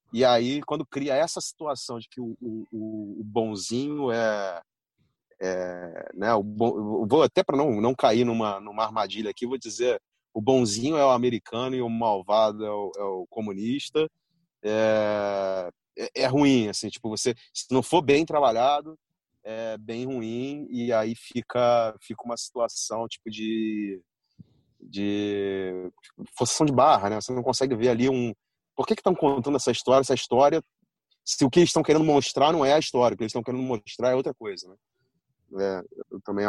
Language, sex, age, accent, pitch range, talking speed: Portuguese, male, 40-59, Brazilian, 105-140 Hz, 180 wpm